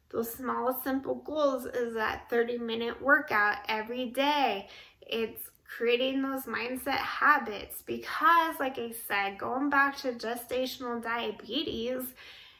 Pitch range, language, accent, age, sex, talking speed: 225-275 Hz, English, American, 20-39, female, 120 wpm